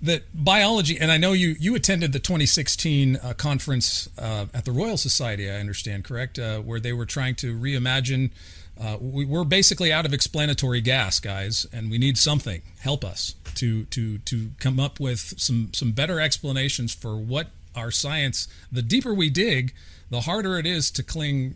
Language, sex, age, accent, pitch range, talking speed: English, male, 40-59, American, 105-140 Hz, 180 wpm